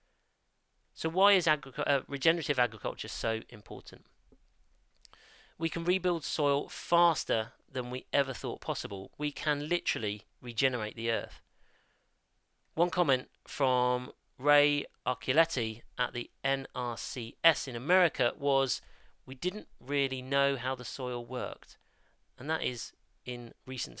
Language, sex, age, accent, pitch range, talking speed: English, male, 40-59, British, 125-155 Hz, 125 wpm